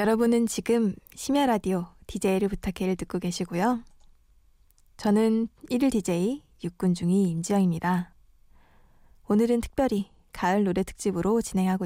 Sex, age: female, 20-39